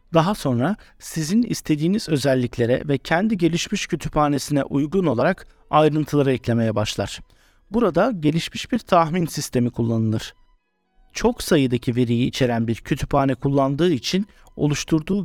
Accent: native